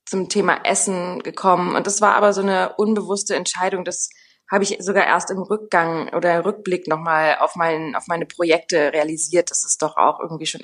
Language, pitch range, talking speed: German, 170-205 Hz, 185 wpm